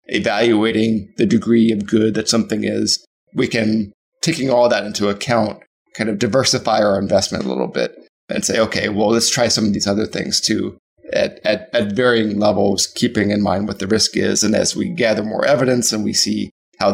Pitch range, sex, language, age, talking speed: 105-120 Hz, male, English, 20-39, 200 wpm